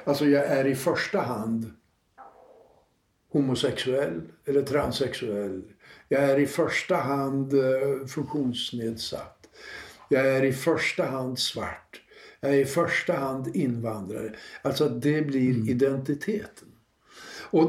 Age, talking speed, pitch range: 60-79, 110 wpm, 130-165 Hz